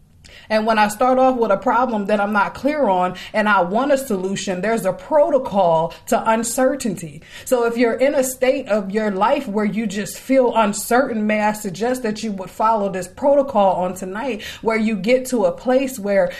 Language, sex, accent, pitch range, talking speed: English, female, American, 200-245 Hz, 200 wpm